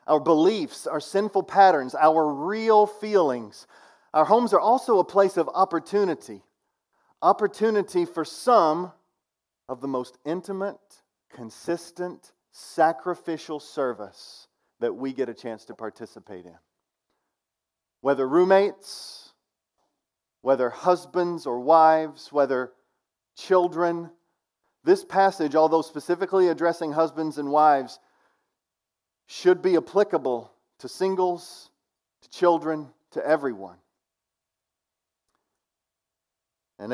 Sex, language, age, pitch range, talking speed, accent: male, English, 40-59, 135-180 Hz, 95 wpm, American